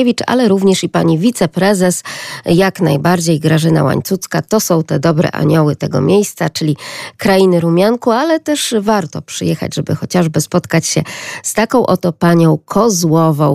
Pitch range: 165-205 Hz